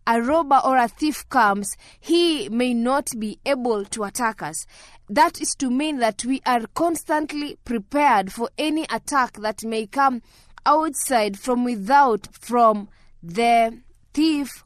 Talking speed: 145 wpm